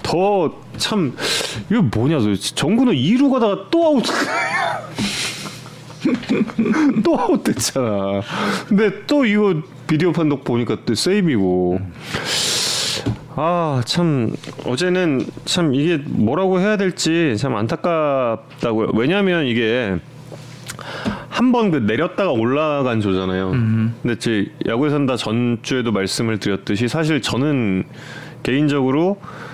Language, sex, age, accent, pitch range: Korean, male, 30-49, native, 115-180 Hz